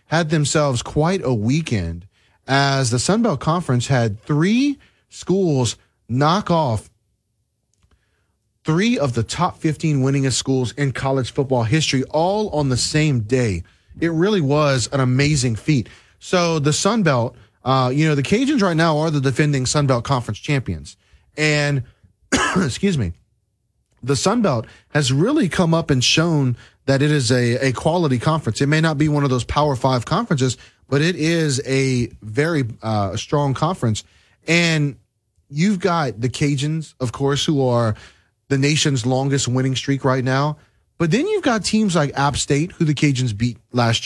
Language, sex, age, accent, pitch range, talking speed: English, male, 30-49, American, 115-155 Hz, 160 wpm